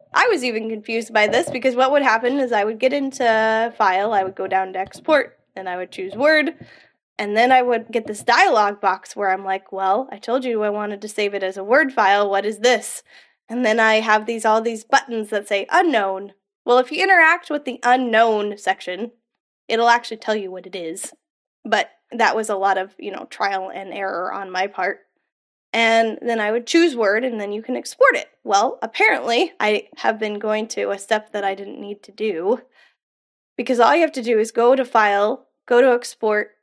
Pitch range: 205-250 Hz